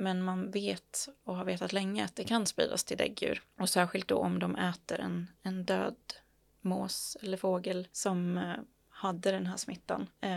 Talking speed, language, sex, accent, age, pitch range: 175 wpm, Swedish, female, native, 20-39, 180-195 Hz